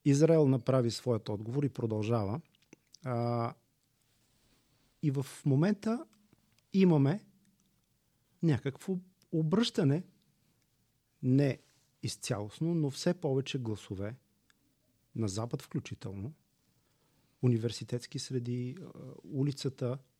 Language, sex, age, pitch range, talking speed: Bulgarian, male, 40-59, 125-150 Hz, 75 wpm